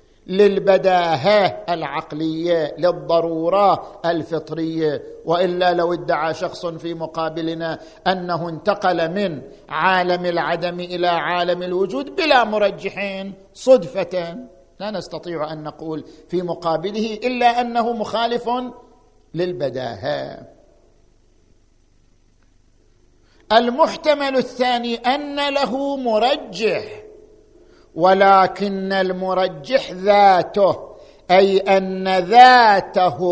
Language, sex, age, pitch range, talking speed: Arabic, male, 50-69, 170-220 Hz, 75 wpm